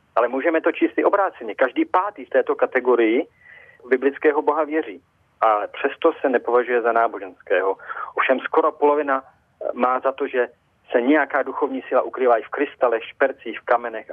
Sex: male